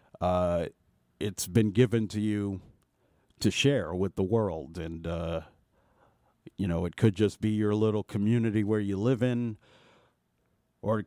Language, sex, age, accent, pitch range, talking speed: English, male, 40-59, American, 100-130 Hz, 150 wpm